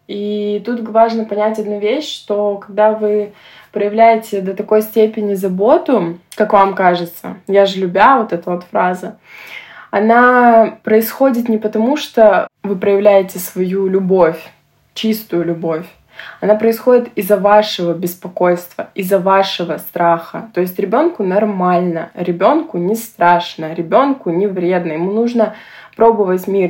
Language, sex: Russian, female